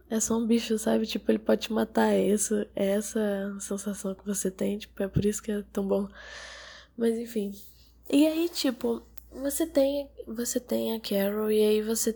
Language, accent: Portuguese, Brazilian